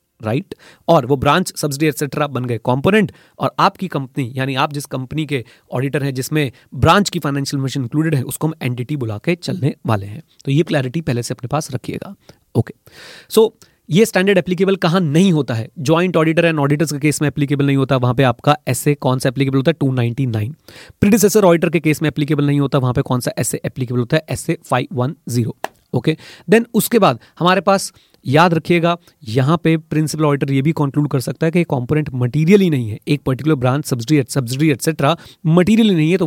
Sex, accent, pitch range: male, Indian, 135-170 Hz